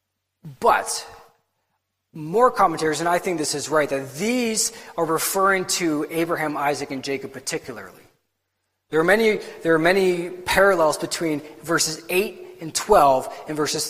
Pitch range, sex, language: 145-185 Hz, male, English